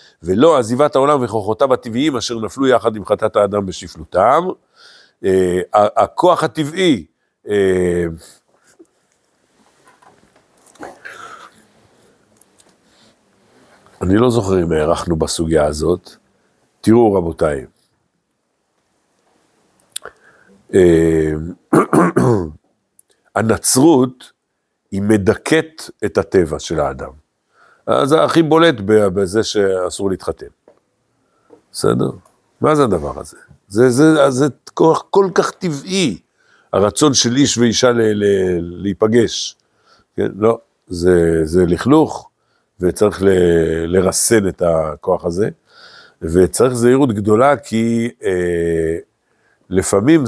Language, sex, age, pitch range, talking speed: Hebrew, male, 60-79, 90-125 Hz, 80 wpm